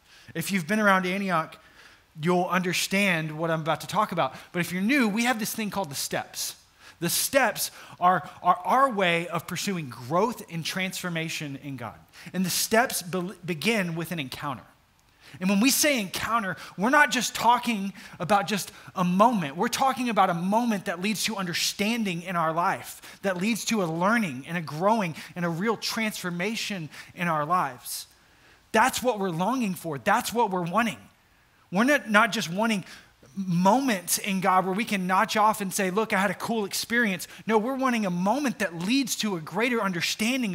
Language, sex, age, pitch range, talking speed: English, male, 20-39, 165-215 Hz, 185 wpm